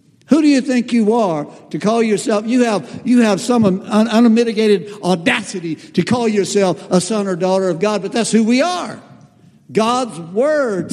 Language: English